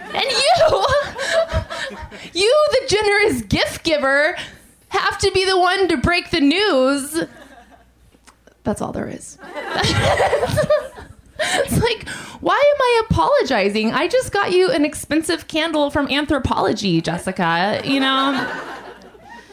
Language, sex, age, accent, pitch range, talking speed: English, female, 20-39, American, 245-335 Hz, 115 wpm